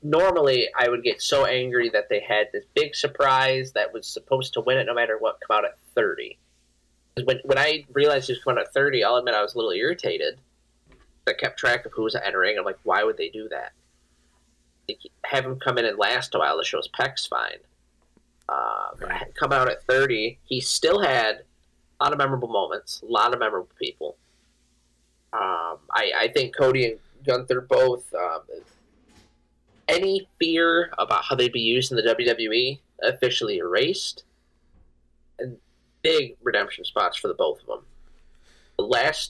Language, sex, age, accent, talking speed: English, male, 30-49, American, 180 wpm